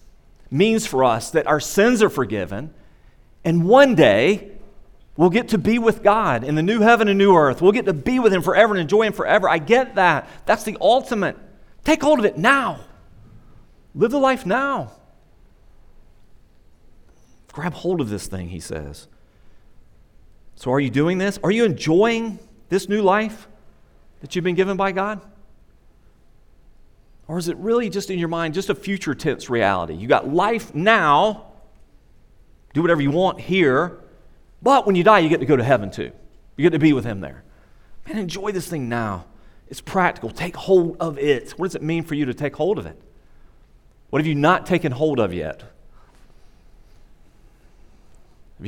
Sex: male